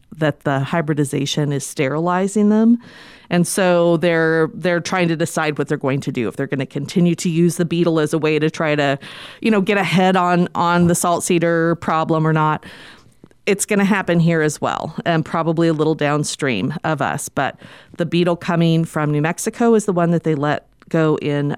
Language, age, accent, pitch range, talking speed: English, 40-59, American, 150-200 Hz, 205 wpm